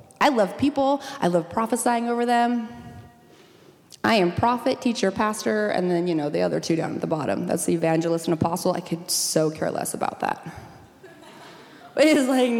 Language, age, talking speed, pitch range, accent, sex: English, 30-49, 185 wpm, 180-255 Hz, American, female